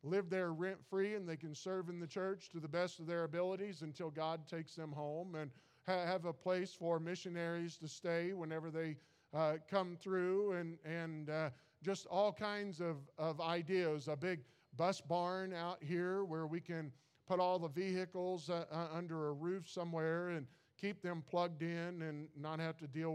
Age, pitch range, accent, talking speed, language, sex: 50-69, 155-180 Hz, American, 185 wpm, English, male